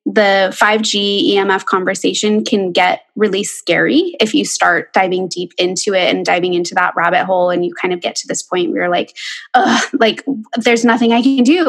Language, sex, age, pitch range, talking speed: English, female, 20-39, 190-235 Hz, 200 wpm